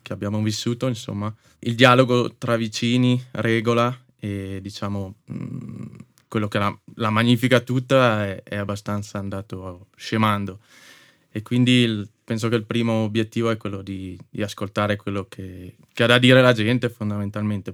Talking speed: 150 wpm